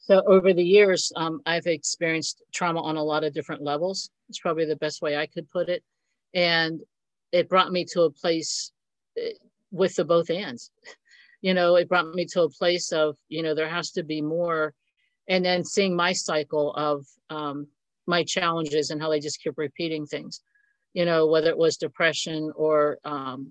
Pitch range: 155-185 Hz